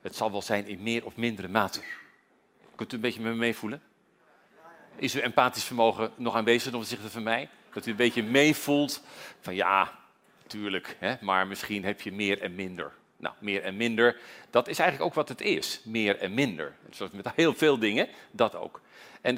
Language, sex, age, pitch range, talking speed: Dutch, male, 40-59, 115-150 Hz, 190 wpm